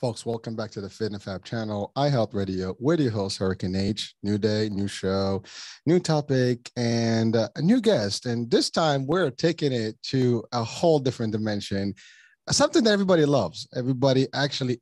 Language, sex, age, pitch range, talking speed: English, male, 30-49, 110-135 Hz, 180 wpm